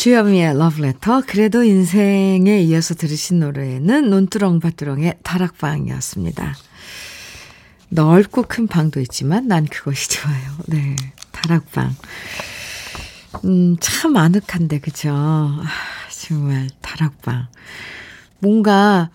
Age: 50-69